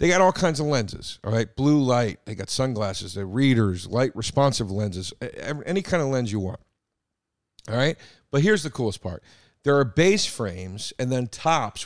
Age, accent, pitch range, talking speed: 40-59, American, 110-155 Hz, 190 wpm